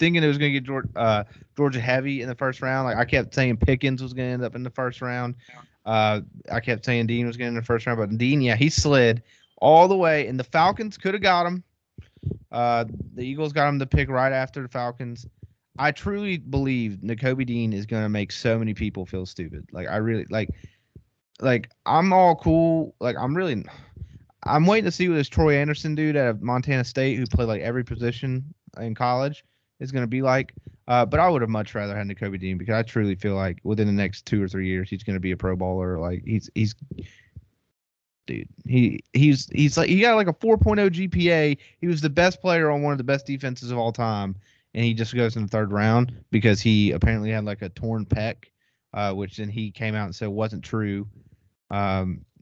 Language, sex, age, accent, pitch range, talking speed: English, male, 20-39, American, 105-135 Hz, 230 wpm